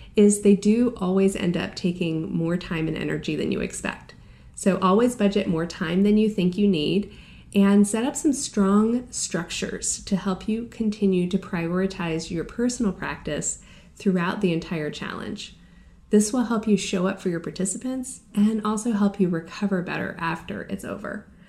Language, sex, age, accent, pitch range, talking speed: English, female, 30-49, American, 170-210 Hz, 170 wpm